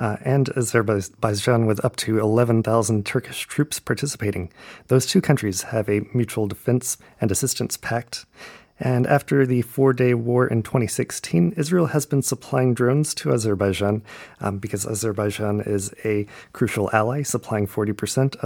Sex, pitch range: male, 105-130 Hz